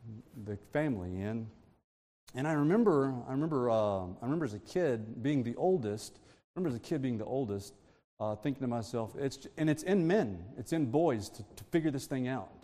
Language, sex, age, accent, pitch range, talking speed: English, male, 40-59, American, 95-130 Hz, 205 wpm